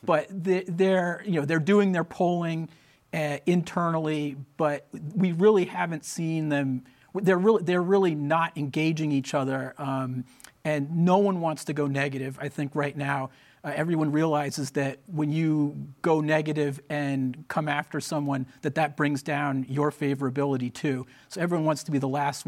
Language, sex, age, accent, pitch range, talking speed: English, male, 40-59, American, 140-165 Hz, 165 wpm